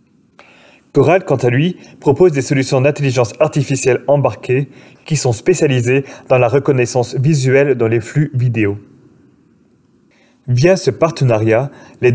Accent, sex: French, male